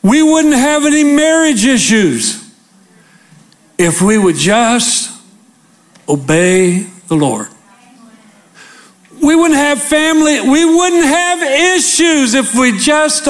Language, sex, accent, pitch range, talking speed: English, male, American, 155-245 Hz, 110 wpm